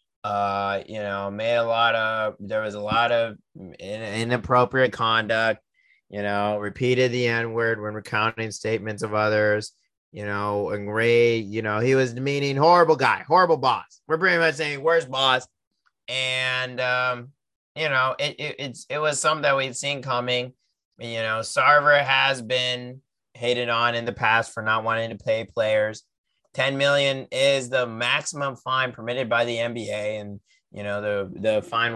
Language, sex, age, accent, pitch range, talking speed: English, male, 30-49, American, 105-135 Hz, 170 wpm